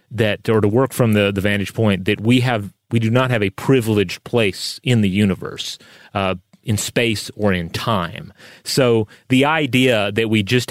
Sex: male